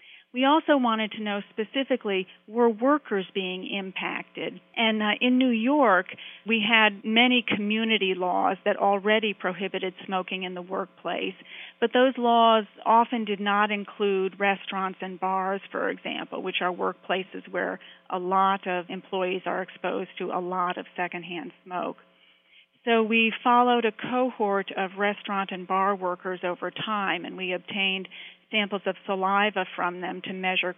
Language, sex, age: English, female, 40-59